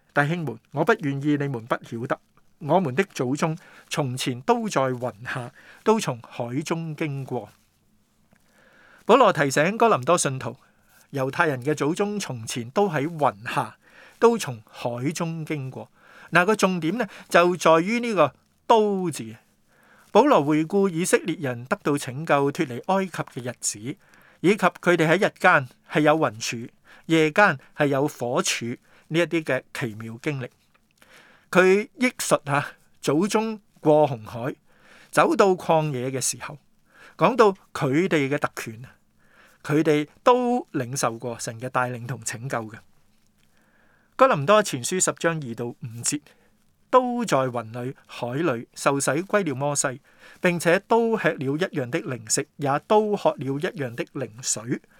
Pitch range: 125-180 Hz